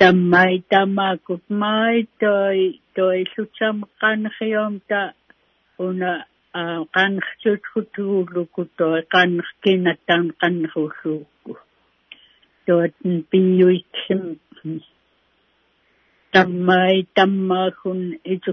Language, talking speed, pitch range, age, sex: English, 70 wpm, 175-200 Hz, 60-79, female